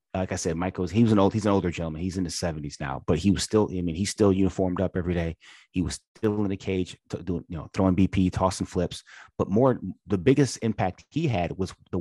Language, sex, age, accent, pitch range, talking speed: English, male, 30-49, American, 90-105 Hz, 240 wpm